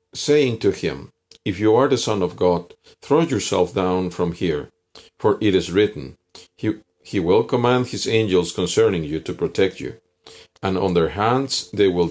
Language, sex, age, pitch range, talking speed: Spanish, male, 50-69, 90-140 Hz, 180 wpm